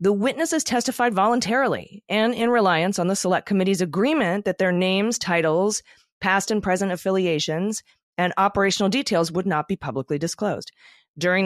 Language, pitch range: English, 160-200 Hz